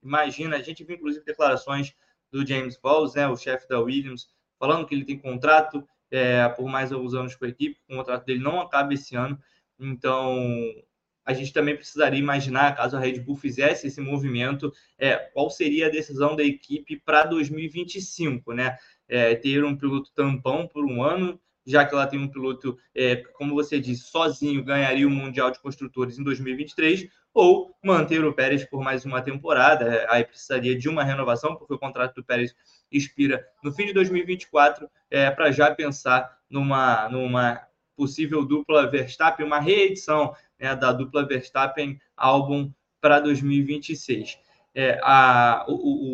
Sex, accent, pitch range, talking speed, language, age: male, Brazilian, 130-150 Hz, 165 wpm, Portuguese, 20-39